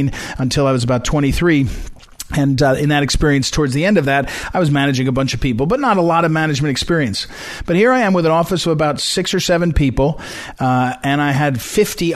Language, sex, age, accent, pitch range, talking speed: English, male, 40-59, American, 135-170 Hz, 230 wpm